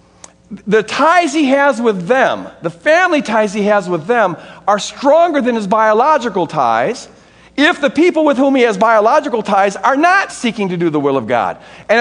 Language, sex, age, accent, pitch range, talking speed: English, male, 50-69, American, 160-240 Hz, 190 wpm